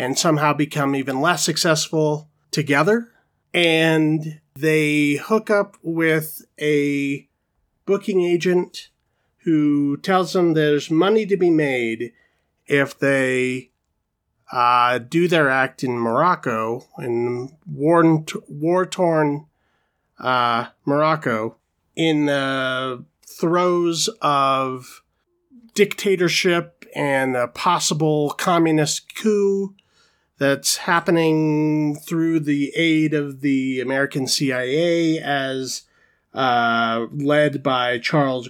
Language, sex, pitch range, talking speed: English, male, 135-170 Hz, 90 wpm